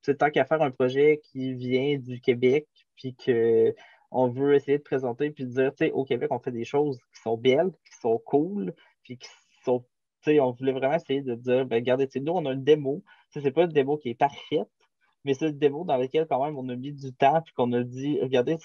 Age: 20-39